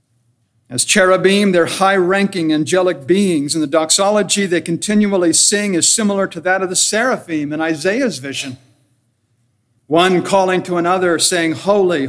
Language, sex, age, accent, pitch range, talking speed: English, male, 60-79, American, 125-185 Hz, 145 wpm